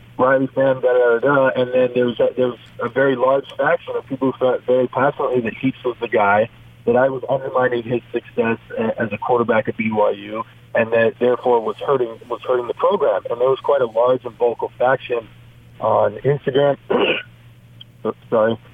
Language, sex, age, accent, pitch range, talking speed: English, male, 40-59, American, 115-140 Hz, 190 wpm